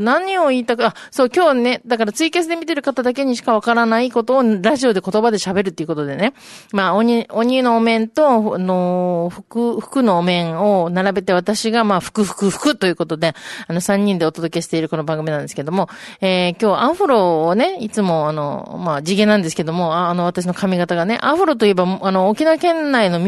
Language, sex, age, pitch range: Japanese, female, 30-49, 185-275 Hz